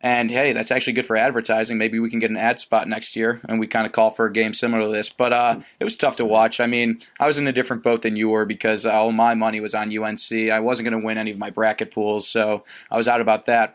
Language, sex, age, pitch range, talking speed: English, male, 20-39, 110-120 Hz, 295 wpm